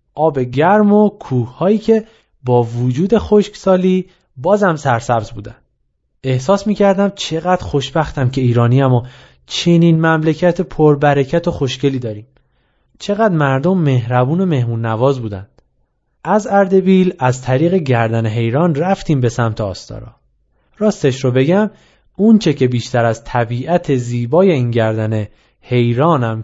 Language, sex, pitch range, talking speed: Persian, male, 125-180 Hz, 120 wpm